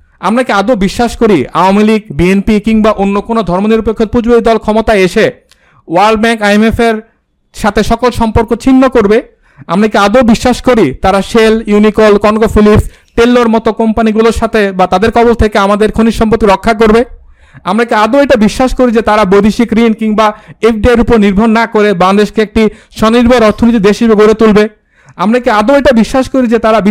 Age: 50-69